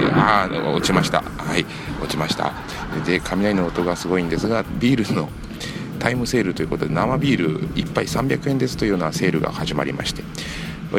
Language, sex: Japanese, male